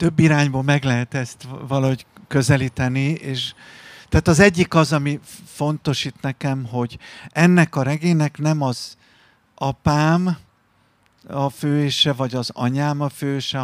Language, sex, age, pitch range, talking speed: Hungarian, male, 50-69, 125-150 Hz, 130 wpm